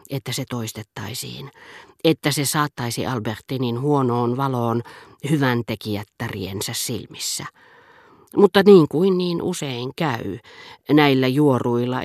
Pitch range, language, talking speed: 120-165 Hz, Finnish, 100 wpm